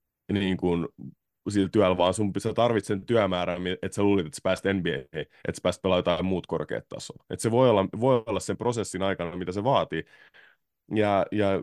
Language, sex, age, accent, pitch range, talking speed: Finnish, male, 30-49, native, 90-115 Hz, 195 wpm